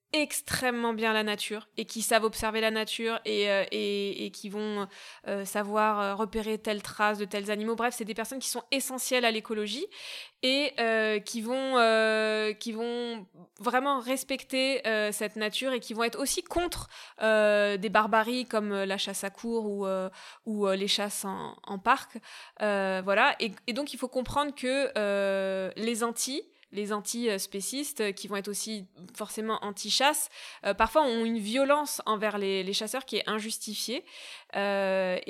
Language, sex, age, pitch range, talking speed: French, female, 20-39, 205-250 Hz, 175 wpm